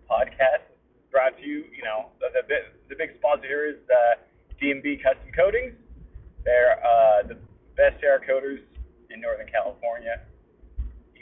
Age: 30-49